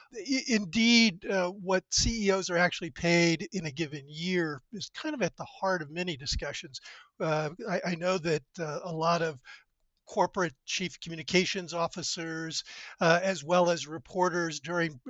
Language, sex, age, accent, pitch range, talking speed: English, male, 50-69, American, 160-195 Hz, 155 wpm